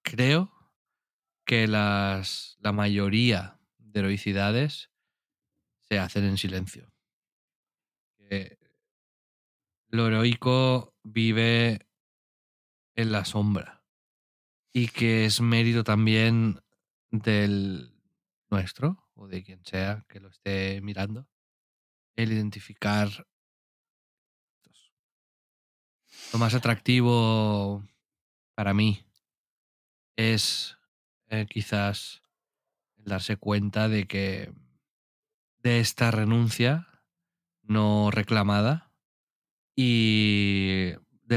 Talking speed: 80 wpm